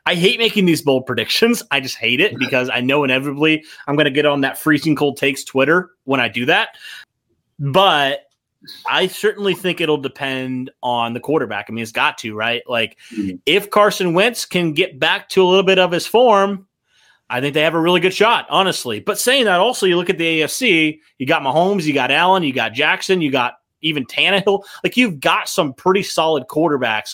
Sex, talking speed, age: male, 210 wpm, 30-49